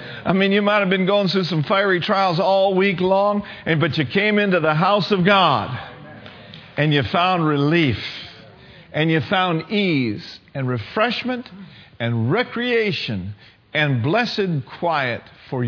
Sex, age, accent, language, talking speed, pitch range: male, 50-69, American, English, 145 wpm, 125-195 Hz